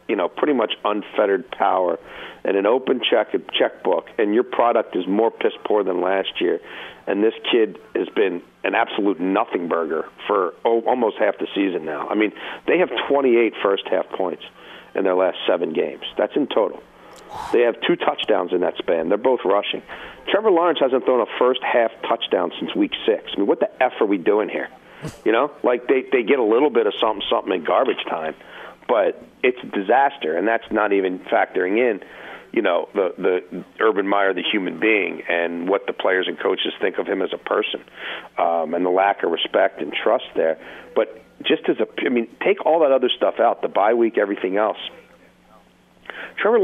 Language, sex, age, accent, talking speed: English, male, 50-69, American, 200 wpm